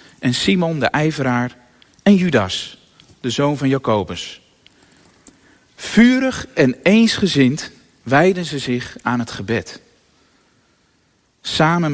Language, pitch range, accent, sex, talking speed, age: Dutch, 125-180 Hz, Dutch, male, 100 wpm, 40-59